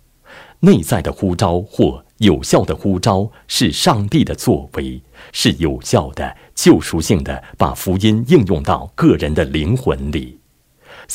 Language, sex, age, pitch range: Chinese, male, 50-69, 80-115 Hz